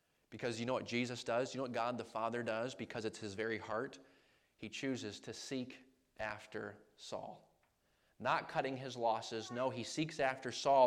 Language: English